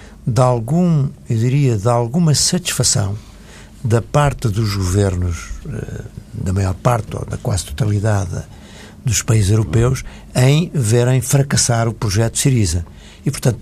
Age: 60-79